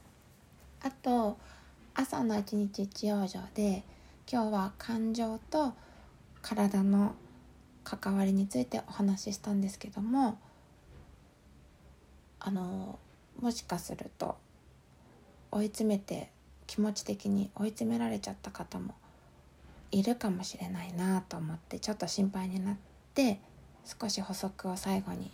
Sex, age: female, 20-39